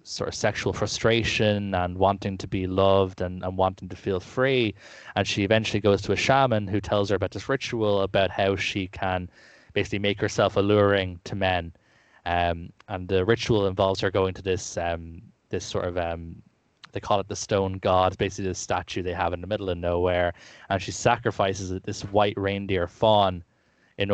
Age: 20-39